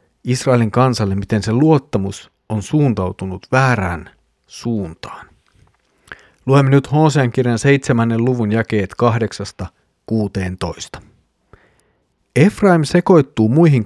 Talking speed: 85 wpm